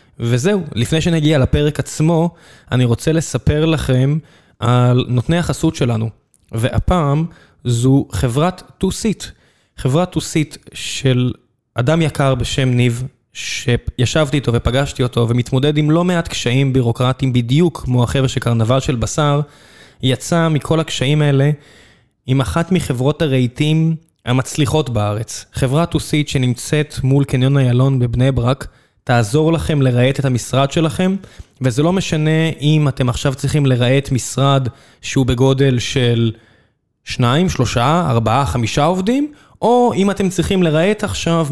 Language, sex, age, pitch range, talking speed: Hebrew, male, 20-39, 125-155 Hz, 125 wpm